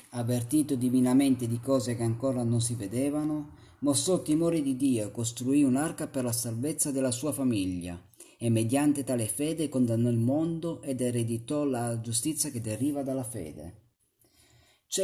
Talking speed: 155 wpm